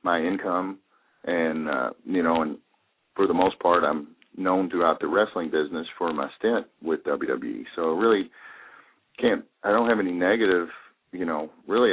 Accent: American